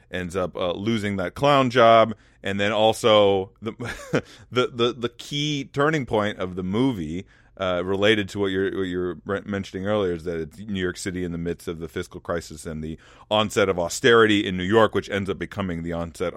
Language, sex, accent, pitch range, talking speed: English, male, American, 90-110 Hz, 205 wpm